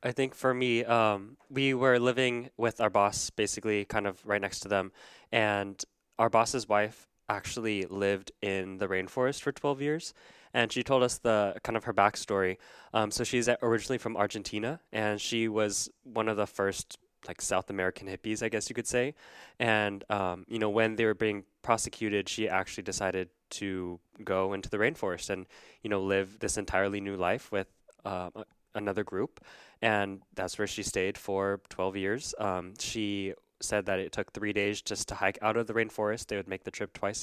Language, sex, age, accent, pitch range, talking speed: English, male, 20-39, American, 100-115 Hz, 190 wpm